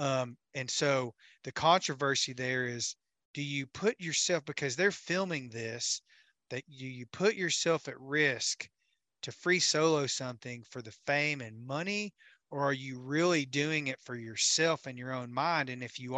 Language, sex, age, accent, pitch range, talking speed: English, male, 30-49, American, 125-150 Hz, 170 wpm